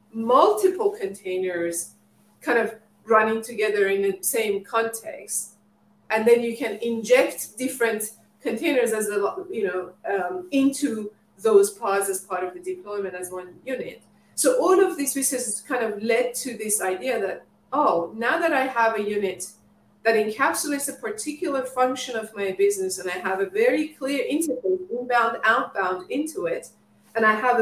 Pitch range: 200-265 Hz